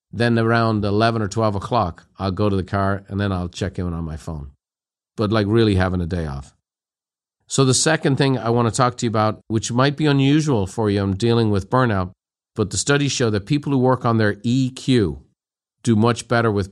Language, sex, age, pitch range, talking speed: English, male, 50-69, 100-125 Hz, 225 wpm